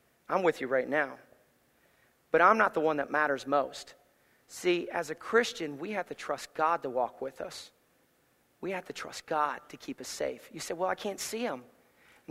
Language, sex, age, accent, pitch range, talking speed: English, male, 40-59, American, 160-245 Hz, 210 wpm